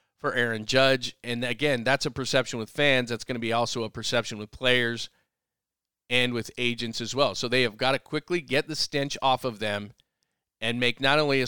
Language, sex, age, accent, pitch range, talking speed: English, male, 40-59, American, 120-135 Hz, 215 wpm